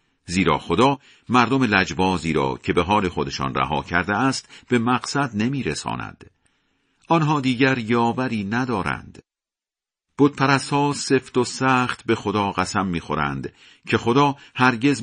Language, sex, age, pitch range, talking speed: Persian, male, 50-69, 85-130 Hz, 120 wpm